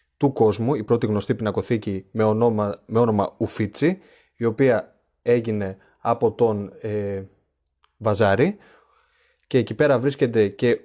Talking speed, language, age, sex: 120 wpm, Greek, 20-39, male